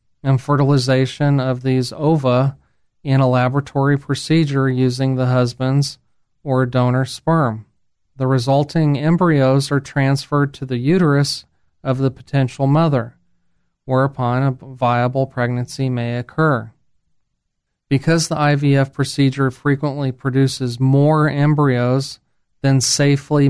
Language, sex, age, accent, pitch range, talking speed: English, male, 40-59, American, 125-140 Hz, 110 wpm